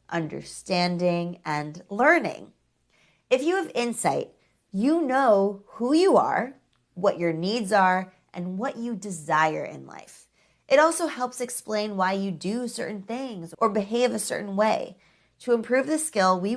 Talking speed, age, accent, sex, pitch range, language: 150 wpm, 20-39, American, female, 170-225 Hz, English